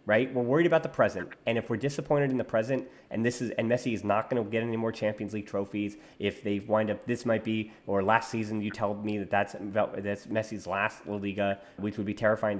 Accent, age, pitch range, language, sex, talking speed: American, 30-49, 105-120 Hz, English, male, 250 wpm